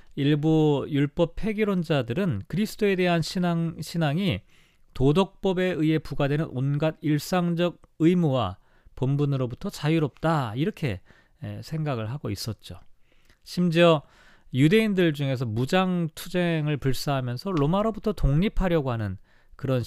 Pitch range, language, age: 125-180 Hz, Korean, 40-59